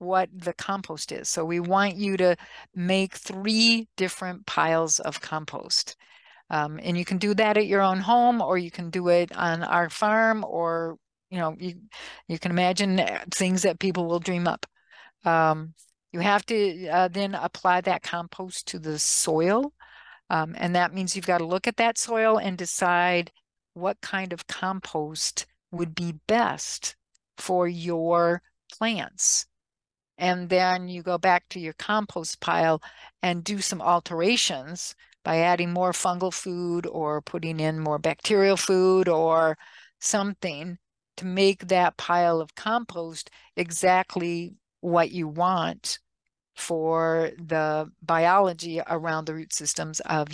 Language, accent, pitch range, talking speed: English, American, 165-195 Hz, 150 wpm